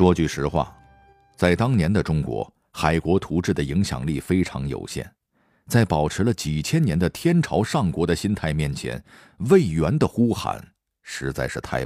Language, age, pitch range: Chinese, 50-69, 75-110 Hz